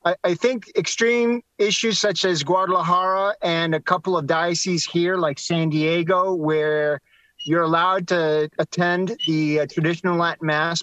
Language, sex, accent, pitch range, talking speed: English, male, American, 150-185 Hz, 145 wpm